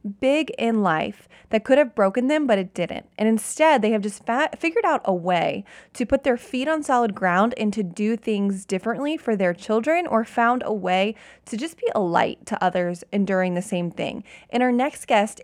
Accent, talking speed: American, 210 wpm